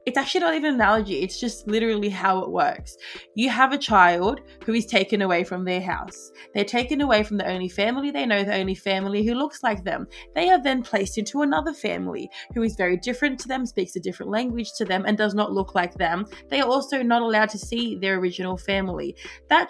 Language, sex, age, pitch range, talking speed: English, female, 20-39, 190-235 Hz, 230 wpm